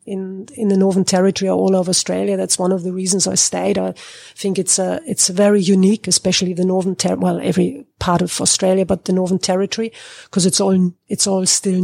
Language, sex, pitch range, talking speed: English, female, 180-200 Hz, 215 wpm